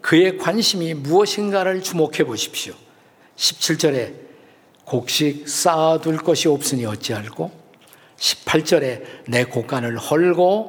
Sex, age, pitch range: male, 50-69, 140-175 Hz